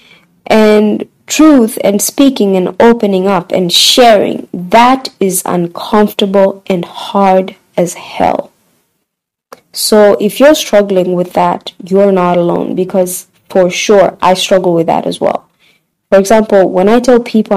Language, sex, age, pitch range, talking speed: English, female, 20-39, 185-220 Hz, 135 wpm